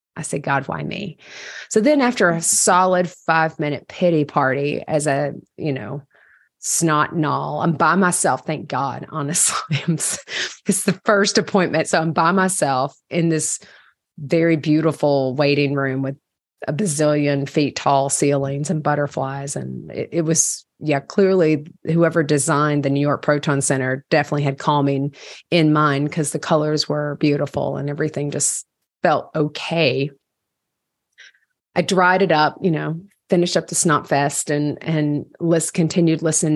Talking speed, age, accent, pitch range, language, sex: 150 wpm, 30-49, American, 145-165 Hz, English, female